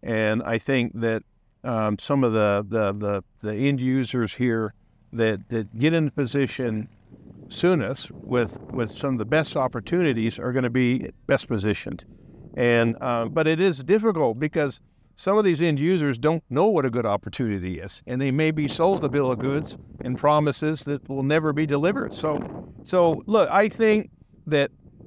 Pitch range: 115-150 Hz